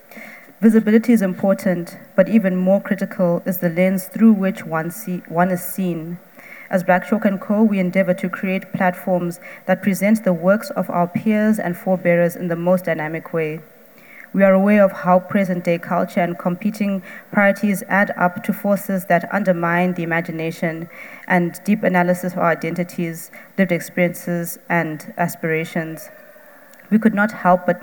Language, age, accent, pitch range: English, 20-39, South African, 175-195 Hz